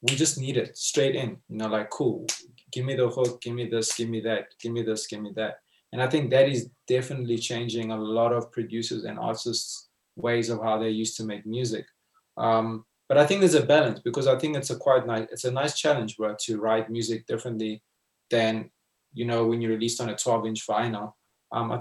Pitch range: 115-130 Hz